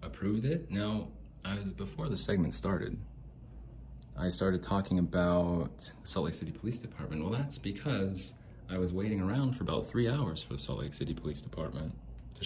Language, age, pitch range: English, 30-49, 85-115 Hz